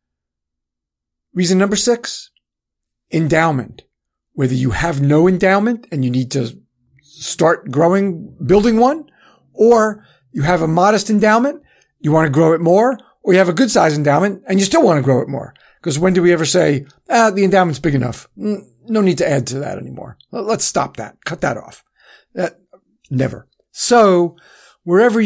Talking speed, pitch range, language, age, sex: 170 wpm, 140-190 Hz, English, 50-69, male